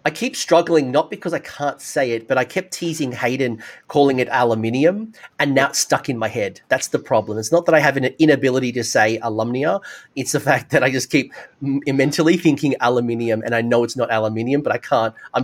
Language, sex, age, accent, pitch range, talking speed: English, male, 30-49, Australian, 120-155 Hz, 220 wpm